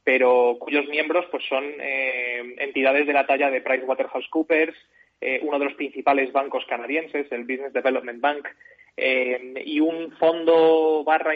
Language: Spanish